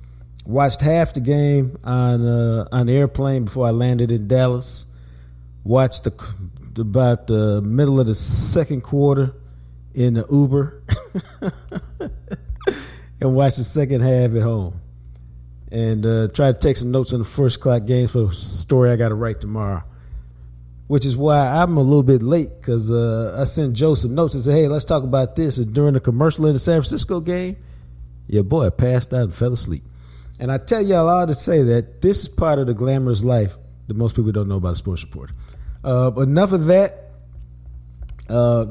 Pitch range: 95-145 Hz